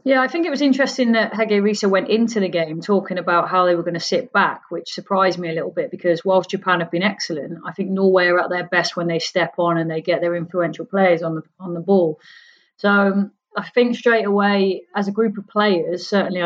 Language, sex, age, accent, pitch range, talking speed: English, female, 30-49, British, 175-200 Hz, 240 wpm